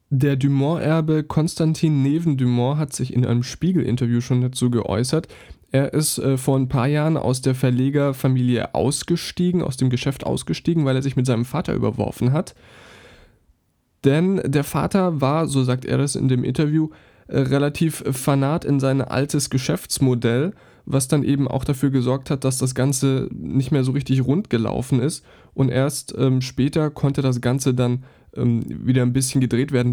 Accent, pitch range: German, 125-145 Hz